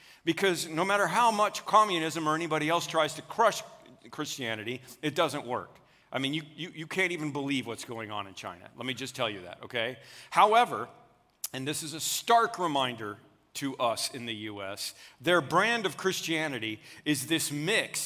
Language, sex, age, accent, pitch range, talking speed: English, male, 50-69, American, 155-215 Hz, 185 wpm